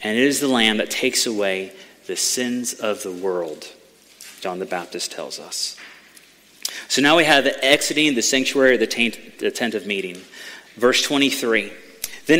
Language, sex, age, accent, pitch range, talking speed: English, male, 30-49, American, 120-170 Hz, 165 wpm